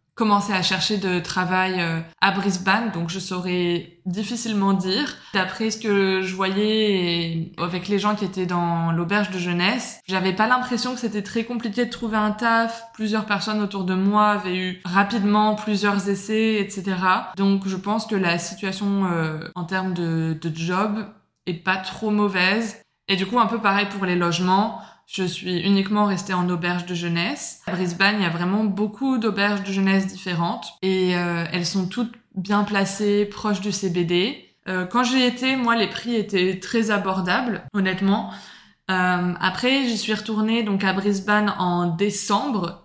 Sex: female